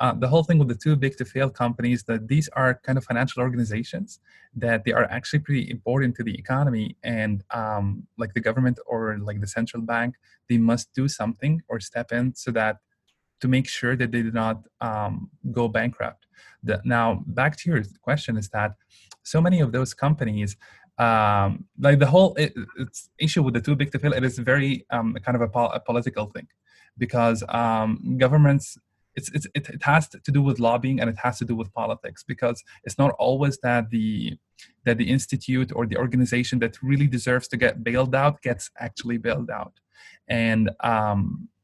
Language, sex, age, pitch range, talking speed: English, male, 20-39, 115-135 Hz, 195 wpm